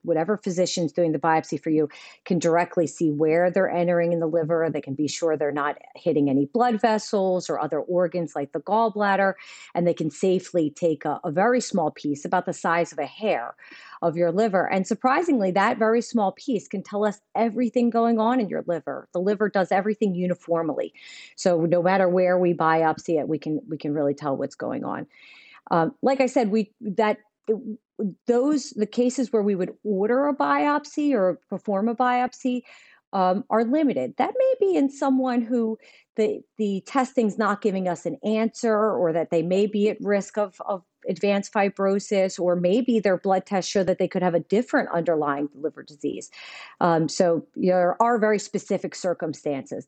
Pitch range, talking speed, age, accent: 170-220 Hz, 190 wpm, 40-59, American